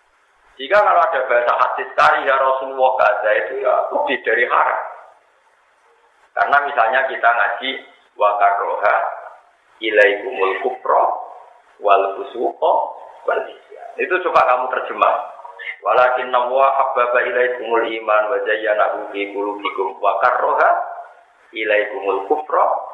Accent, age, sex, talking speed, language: native, 50-69, male, 120 wpm, Indonesian